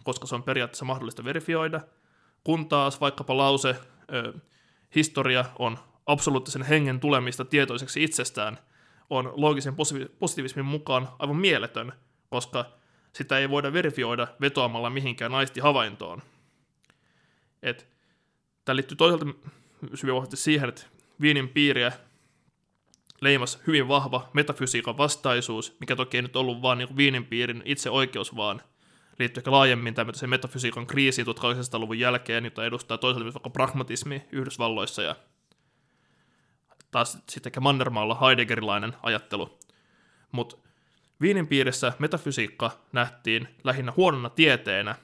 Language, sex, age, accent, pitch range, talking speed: Finnish, male, 20-39, native, 120-145 Hz, 110 wpm